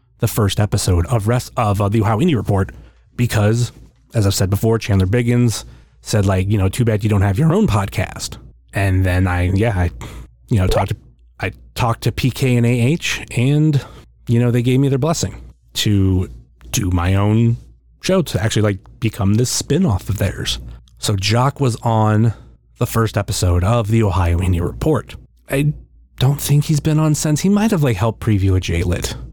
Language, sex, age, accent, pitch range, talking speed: English, male, 30-49, American, 95-120 Hz, 190 wpm